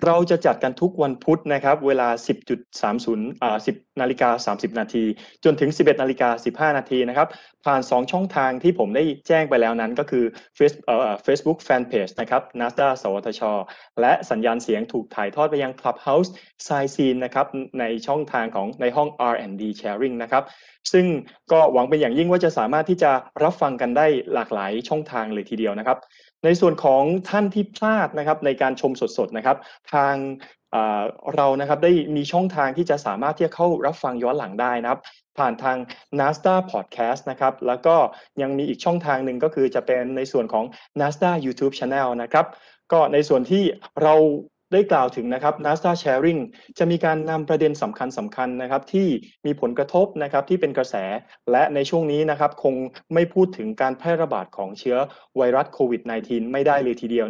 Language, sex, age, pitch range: Thai, male, 20-39, 125-160 Hz